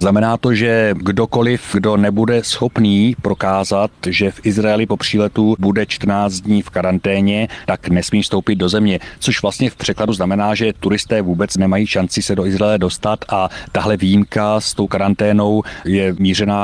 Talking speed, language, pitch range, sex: 160 wpm, Czech, 95-115 Hz, male